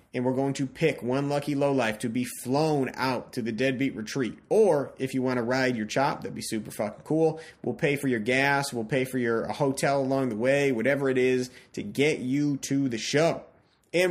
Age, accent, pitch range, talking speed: 30-49, American, 120-140 Hz, 220 wpm